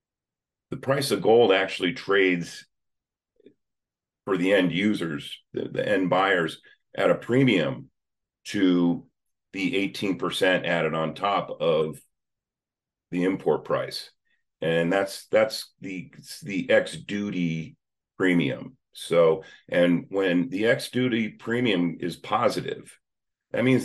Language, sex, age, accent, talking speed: English, male, 40-59, American, 120 wpm